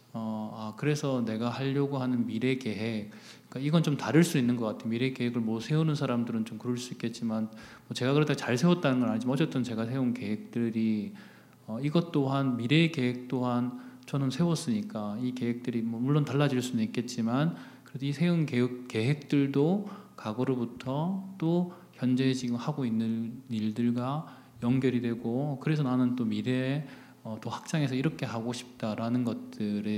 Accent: native